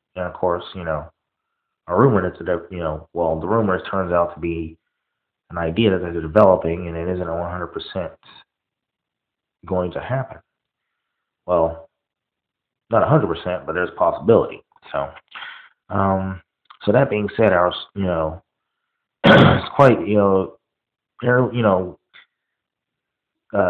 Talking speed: 150 wpm